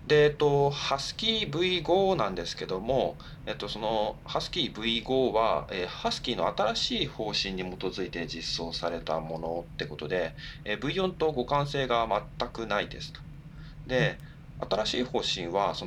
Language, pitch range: Japanese, 105-150 Hz